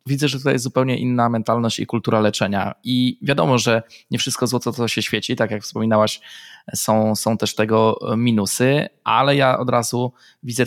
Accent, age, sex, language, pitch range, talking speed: native, 20-39, male, Polish, 110-135 Hz, 180 wpm